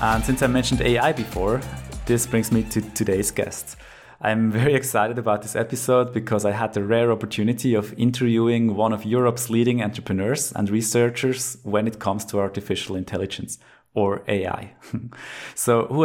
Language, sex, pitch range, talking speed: English, male, 105-125 Hz, 160 wpm